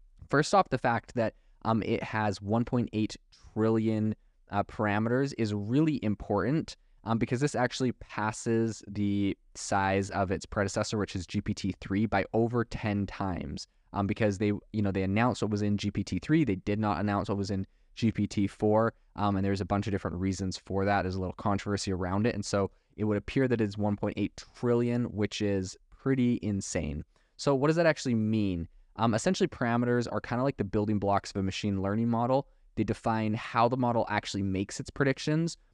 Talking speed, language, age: 185 wpm, English, 20-39